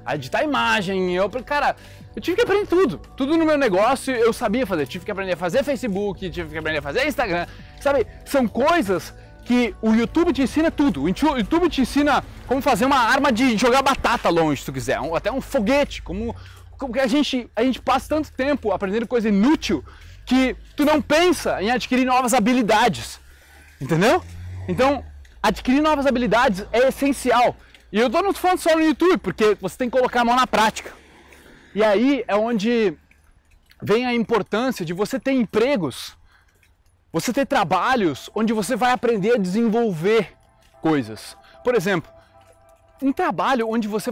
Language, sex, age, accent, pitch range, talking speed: Portuguese, male, 20-39, Brazilian, 185-270 Hz, 175 wpm